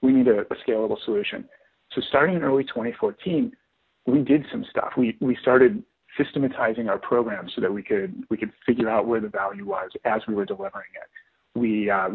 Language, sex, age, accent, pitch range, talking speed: English, male, 40-59, American, 120-195 Hz, 200 wpm